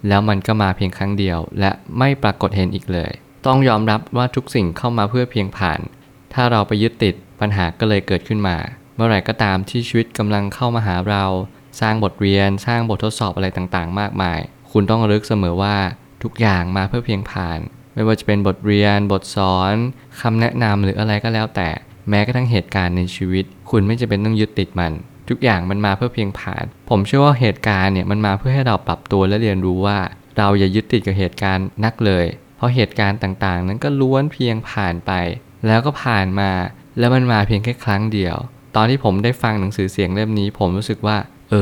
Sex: male